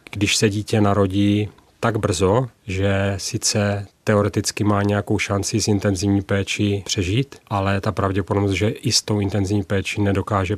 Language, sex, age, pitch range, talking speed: Czech, male, 30-49, 95-105 Hz, 145 wpm